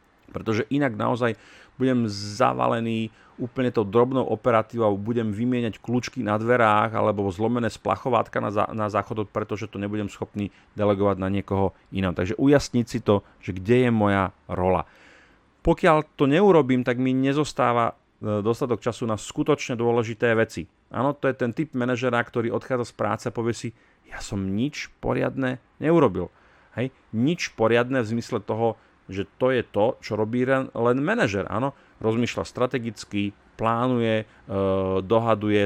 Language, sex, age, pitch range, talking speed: Slovak, male, 40-59, 100-125 Hz, 150 wpm